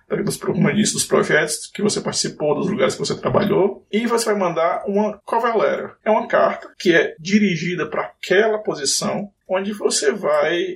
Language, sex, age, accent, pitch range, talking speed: Portuguese, male, 20-39, Brazilian, 180-210 Hz, 160 wpm